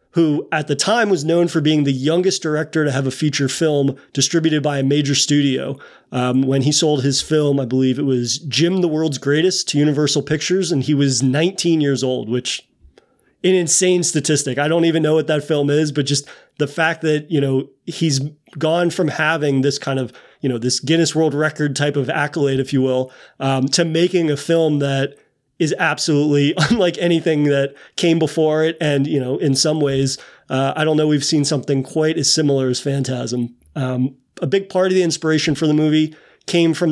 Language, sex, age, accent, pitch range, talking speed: English, male, 30-49, American, 140-160 Hz, 205 wpm